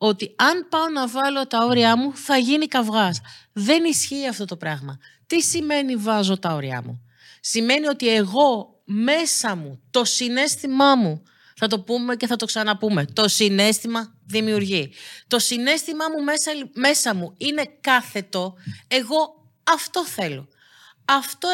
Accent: native